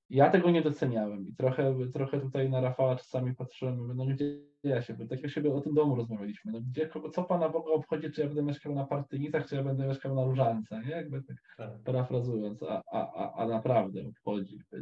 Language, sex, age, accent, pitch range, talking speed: Polish, male, 20-39, native, 120-145 Hz, 220 wpm